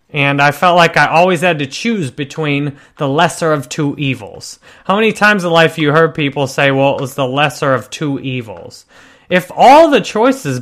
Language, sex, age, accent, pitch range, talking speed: English, male, 30-49, American, 135-170 Hz, 210 wpm